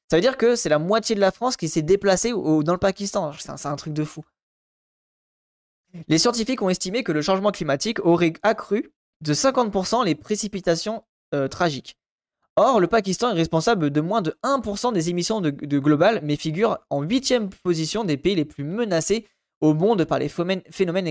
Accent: French